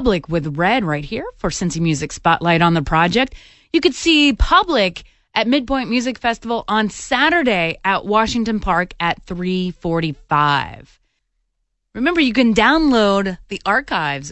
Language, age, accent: English, 30-49, American